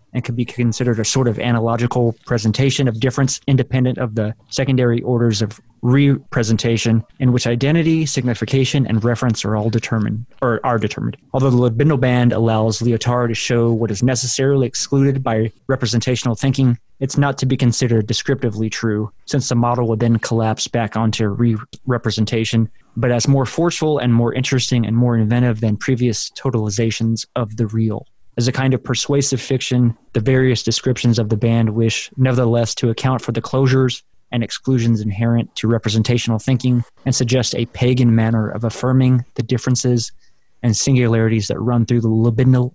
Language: English